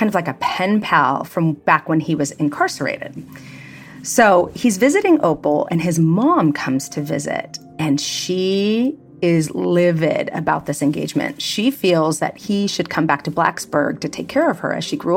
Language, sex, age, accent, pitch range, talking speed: English, female, 30-49, American, 150-190 Hz, 180 wpm